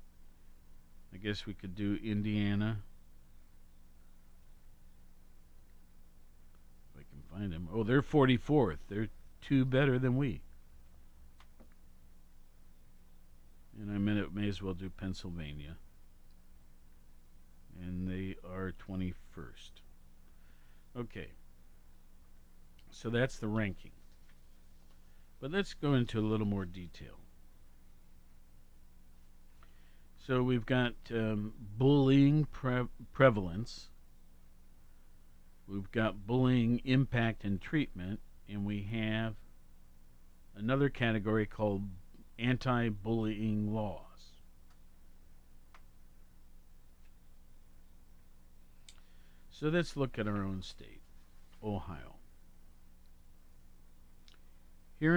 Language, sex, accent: English, male, American